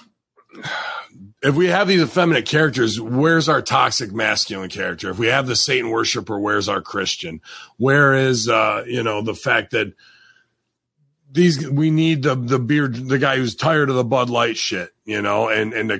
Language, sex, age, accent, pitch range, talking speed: English, male, 40-59, American, 105-140 Hz, 180 wpm